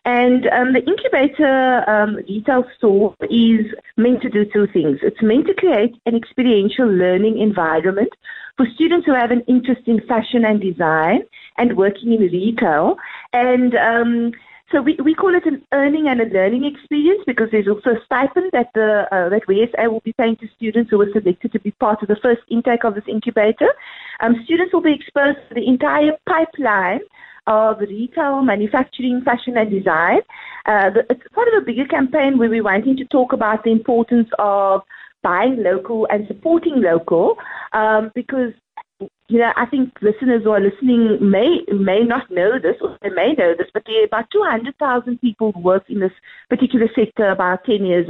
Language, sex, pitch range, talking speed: English, female, 210-265 Hz, 185 wpm